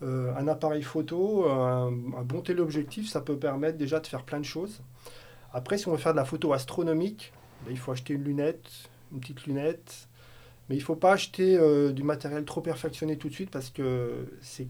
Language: French